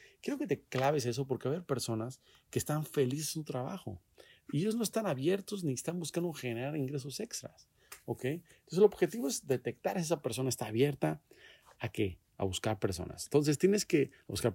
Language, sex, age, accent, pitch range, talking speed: Spanish, male, 40-59, Mexican, 105-140 Hz, 185 wpm